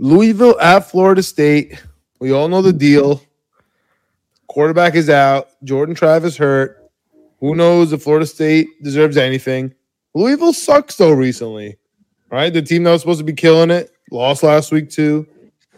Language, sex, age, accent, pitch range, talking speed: English, male, 20-39, American, 145-205 Hz, 150 wpm